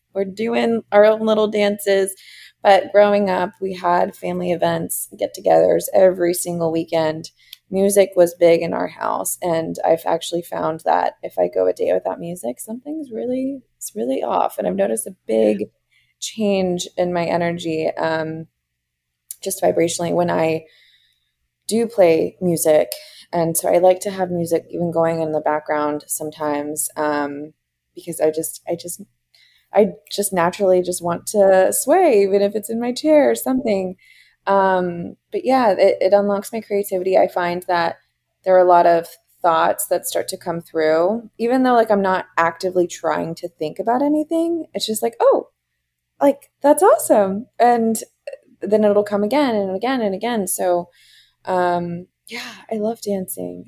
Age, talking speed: 20-39, 165 wpm